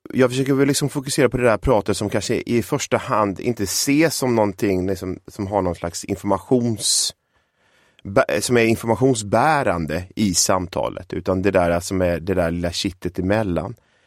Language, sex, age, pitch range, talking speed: Swedish, male, 30-49, 95-125 Hz, 165 wpm